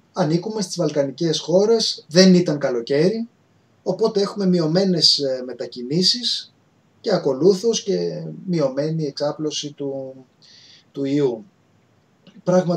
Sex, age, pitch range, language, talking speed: male, 20-39, 130-180 Hz, Greek, 95 wpm